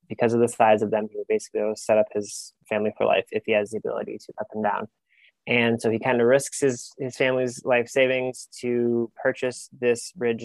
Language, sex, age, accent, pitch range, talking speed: English, male, 20-39, American, 105-120 Hz, 225 wpm